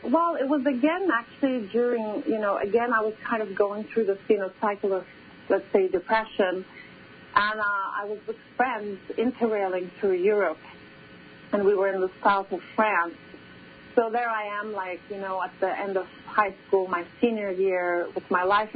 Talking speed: 190 wpm